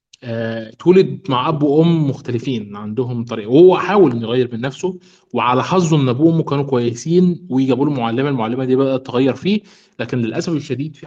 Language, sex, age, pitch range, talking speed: Arabic, male, 20-39, 120-165 Hz, 175 wpm